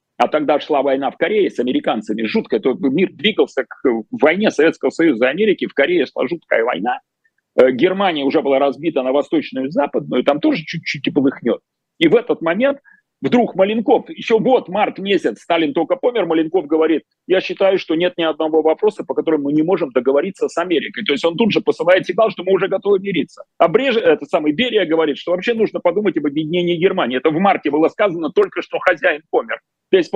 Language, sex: Russian, male